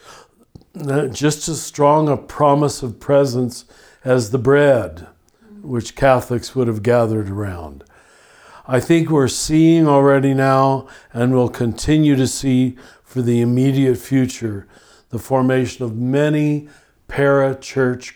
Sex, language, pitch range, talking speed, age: male, English, 120-140 Hz, 120 wpm, 60-79